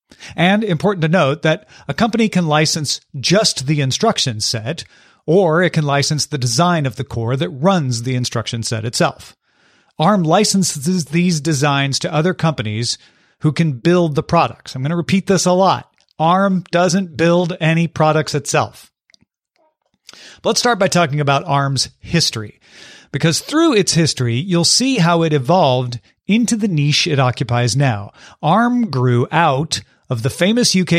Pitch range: 140-190 Hz